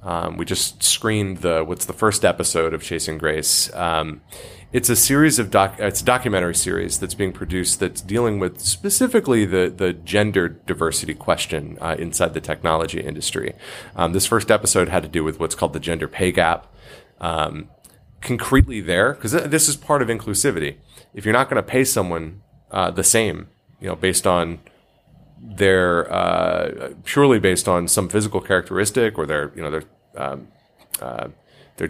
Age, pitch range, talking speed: 30-49, 90-115 Hz, 175 wpm